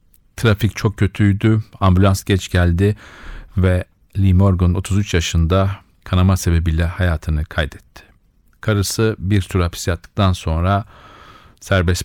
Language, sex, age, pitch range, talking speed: Turkish, male, 50-69, 90-105 Hz, 105 wpm